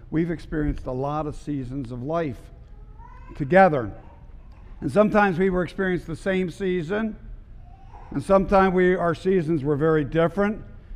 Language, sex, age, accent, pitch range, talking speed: English, male, 60-79, American, 125-160 Hz, 130 wpm